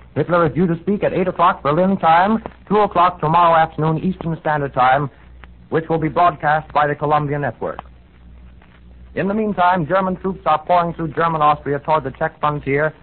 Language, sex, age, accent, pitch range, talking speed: English, male, 60-79, American, 145-175 Hz, 180 wpm